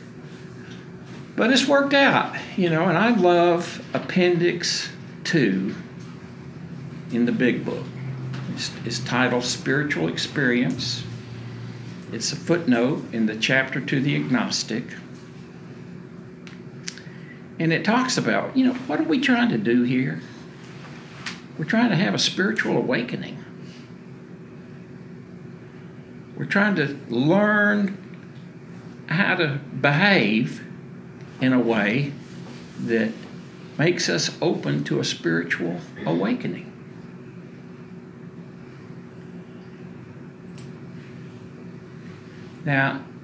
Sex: male